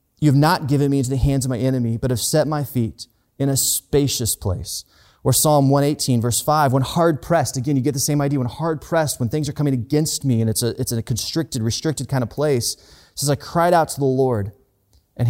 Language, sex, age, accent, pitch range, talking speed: English, male, 30-49, American, 115-155 Hz, 245 wpm